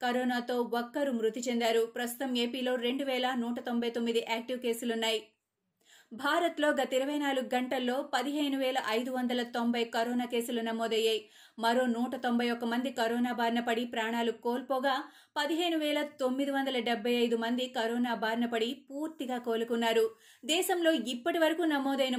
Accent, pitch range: native, 235-275 Hz